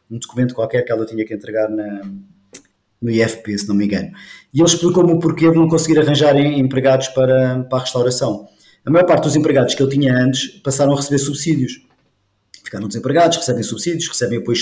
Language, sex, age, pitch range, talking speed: Portuguese, male, 20-39, 125-165 Hz, 195 wpm